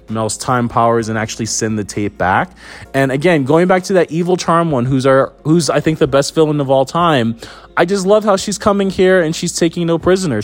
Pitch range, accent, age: 110-140 Hz, American, 20-39